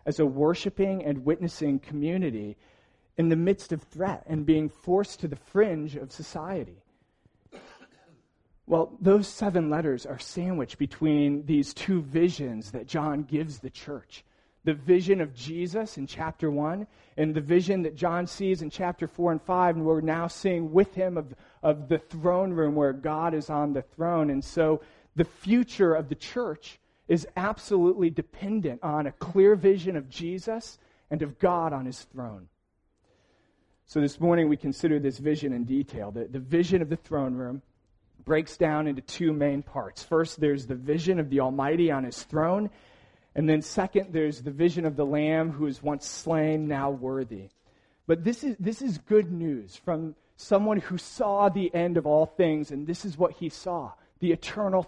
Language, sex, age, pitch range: English, male, 40-59, 145-175 Hz